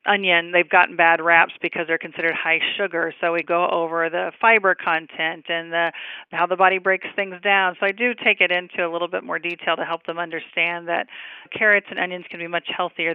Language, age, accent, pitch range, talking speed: English, 40-59, American, 170-195 Hz, 220 wpm